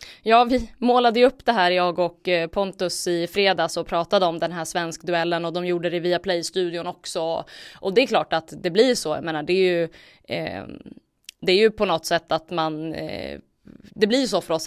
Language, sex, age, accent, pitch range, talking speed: Swedish, female, 20-39, native, 165-195 Hz, 215 wpm